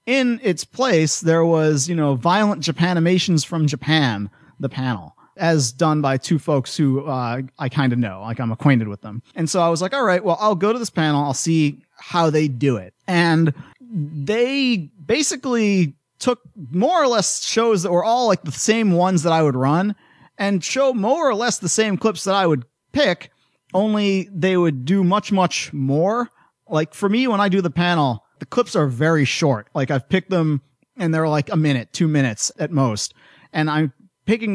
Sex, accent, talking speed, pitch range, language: male, American, 200 wpm, 140-190 Hz, English